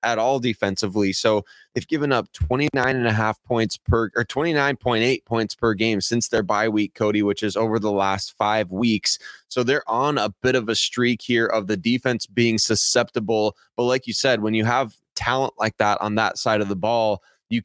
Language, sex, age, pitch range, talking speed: English, male, 20-39, 105-125 Hz, 205 wpm